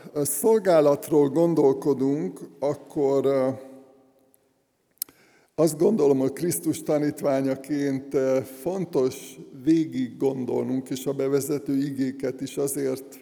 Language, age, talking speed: Hungarian, 60-79, 80 wpm